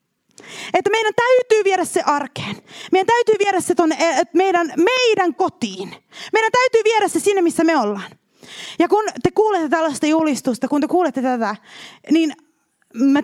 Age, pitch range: 30-49, 215-330 Hz